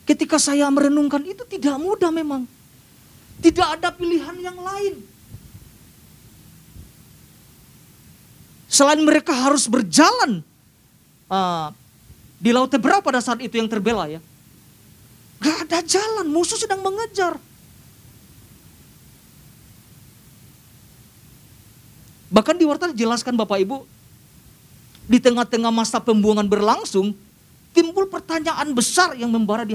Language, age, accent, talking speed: Indonesian, 40-59, native, 100 wpm